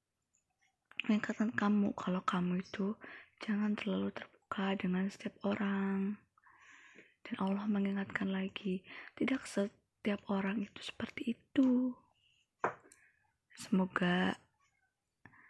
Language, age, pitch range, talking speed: Indonesian, 20-39, 195-230 Hz, 85 wpm